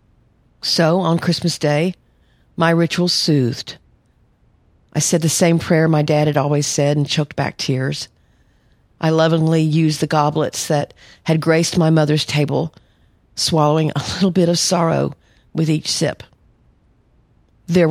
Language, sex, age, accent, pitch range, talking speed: English, female, 50-69, American, 145-175 Hz, 140 wpm